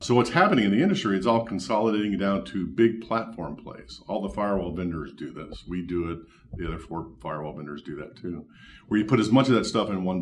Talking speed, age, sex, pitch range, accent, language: 240 wpm, 50-69, male, 90-115 Hz, American, English